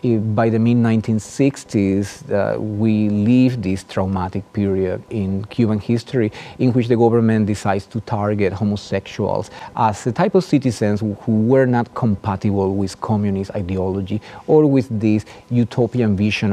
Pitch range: 100-120 Hz